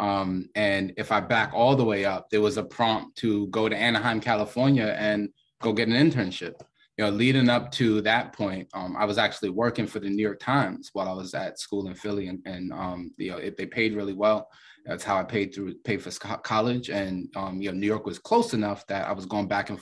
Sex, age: male, 20-39